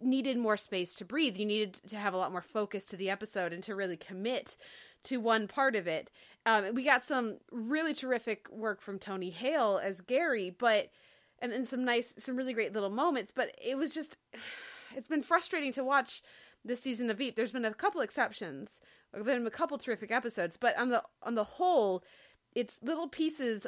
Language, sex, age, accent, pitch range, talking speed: English, female, 20-39, American, 200-260 Hz, 200 wpm